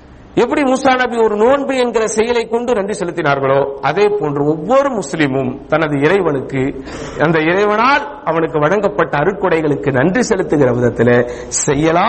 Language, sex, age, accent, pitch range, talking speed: English, male, 50-69, Indian, 150-210 Hz, 145 wpm